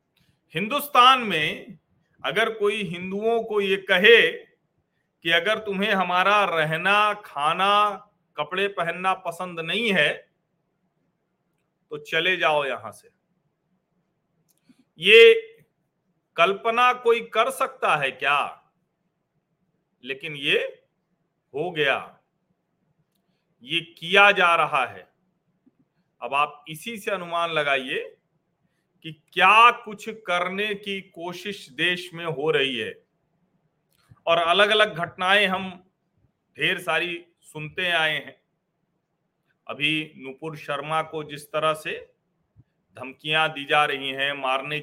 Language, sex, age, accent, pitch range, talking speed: Hindi, male, 40-59, native, 160-200 Hz, 105 wpm